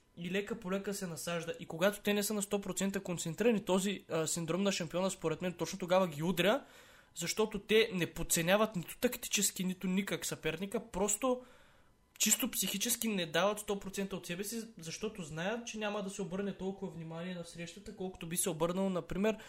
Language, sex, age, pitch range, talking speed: Bulgarian, male, 20-39, 165-205 Hz, 175 wpm